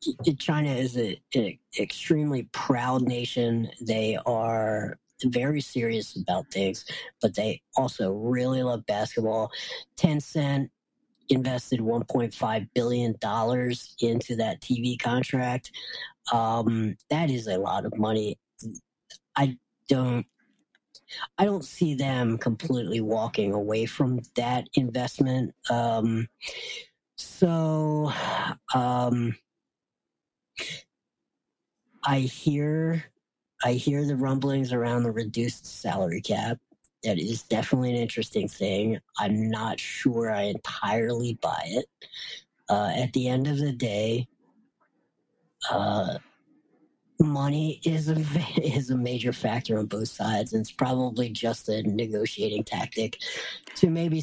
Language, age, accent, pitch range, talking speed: English, 40-59, American, 115-145 Hz, 115 wpm